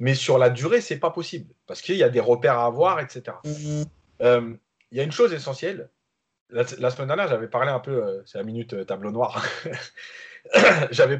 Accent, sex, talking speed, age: French, male, 215 wpm, 30-49